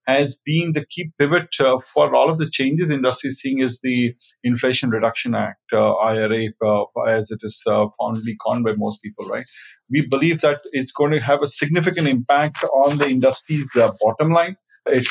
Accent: Indian